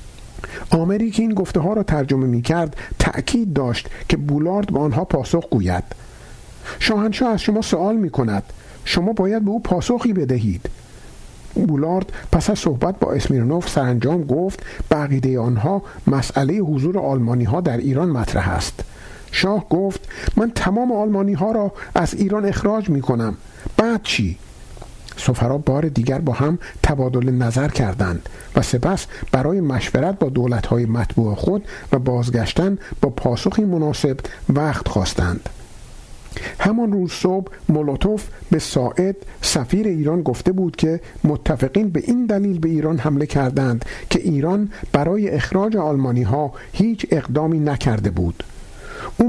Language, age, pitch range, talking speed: Persian, 50-69, 125-190 Hz, 140 wpm